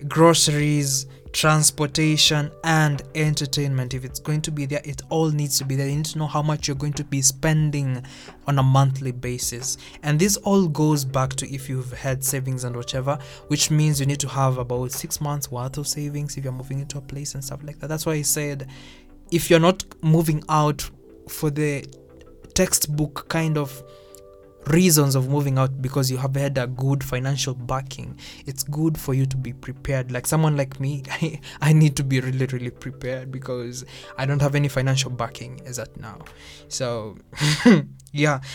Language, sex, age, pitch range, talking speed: English, male, 20-39, 130-150 Hz, 190 wpm